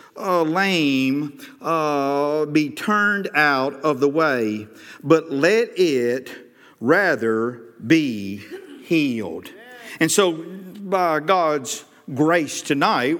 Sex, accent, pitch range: male, American, 145-195 Hz